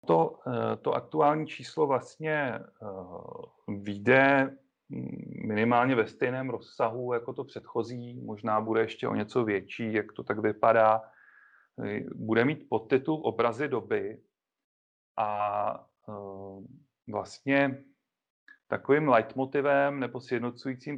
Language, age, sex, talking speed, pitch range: Czech, 40-59, male, 95 wpm, 110-130 Hz